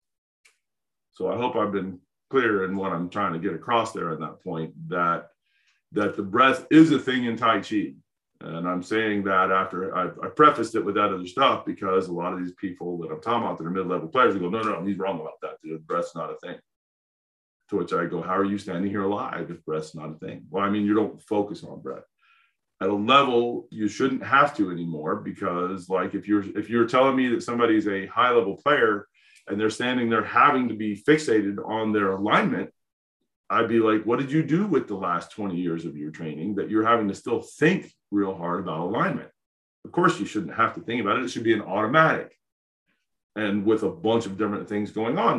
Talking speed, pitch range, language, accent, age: 225 wpm, 90-110 Hz, English, American, 40-59